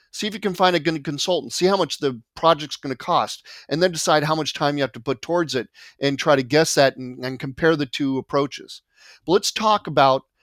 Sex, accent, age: male, American, 40-59